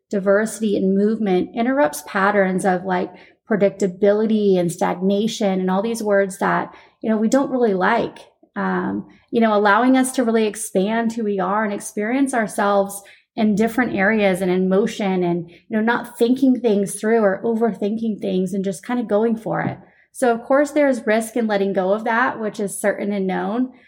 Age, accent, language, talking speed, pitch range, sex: 30-49, American, English, 185 wpm, 195-235 Hz, female